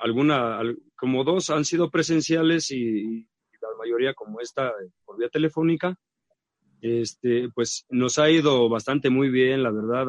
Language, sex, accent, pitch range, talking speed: English, male, Mexican, 120-145 Hz, 150 wpm